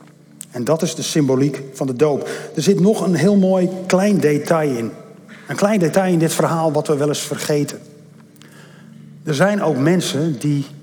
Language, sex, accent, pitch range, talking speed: Dutch, male, Dutch, 140-185 Hz, 185 wpm